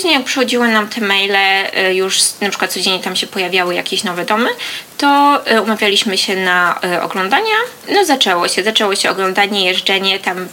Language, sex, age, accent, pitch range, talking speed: Polish, female, 20-39, native, 185-215 Hz, 160 wpm